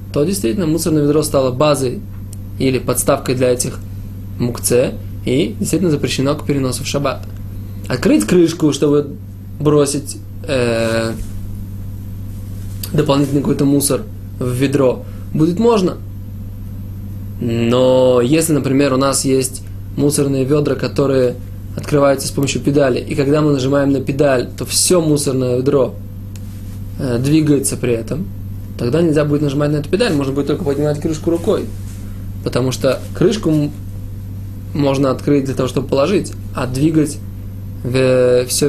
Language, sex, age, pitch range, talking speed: Russian, male, 20-39, 100-145 Hz, 125 wpm